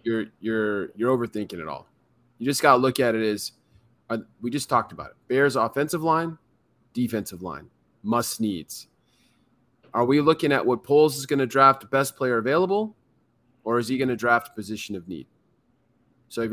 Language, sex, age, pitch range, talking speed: English, male, 20-39, 110-135 Hz, 185 wpm